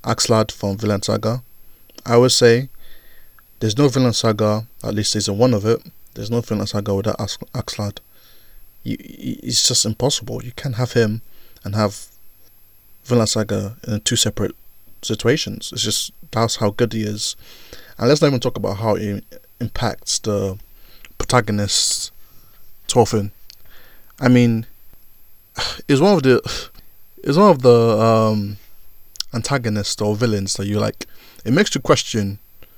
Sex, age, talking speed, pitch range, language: male, 20-39, 140 wpm, 105-120 Hz, English